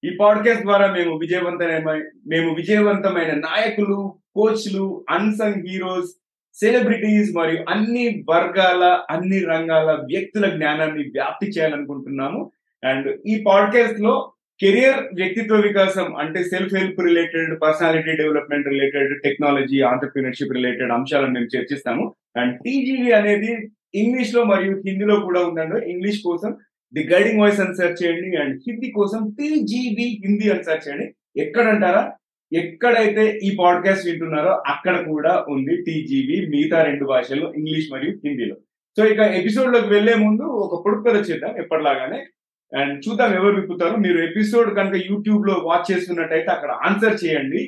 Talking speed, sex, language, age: 130 wpm, male, Telugu, 30-49